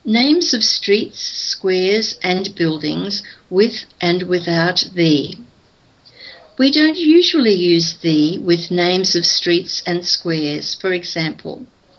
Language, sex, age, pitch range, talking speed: English, female, 60-79, 170-220 Hz, 115 wpm